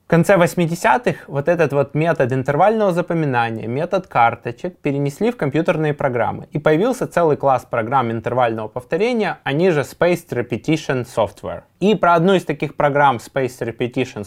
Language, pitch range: Russian, 115-155 Hz